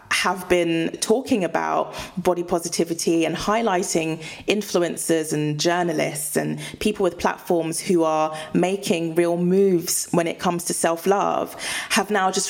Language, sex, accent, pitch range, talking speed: English, female, British, 165-195 Hz, 135 wpm